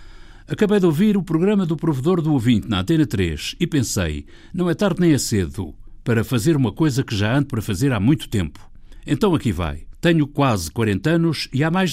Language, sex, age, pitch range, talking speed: Portuguese, male, 60-79, 105-160 Hz, 210 wpm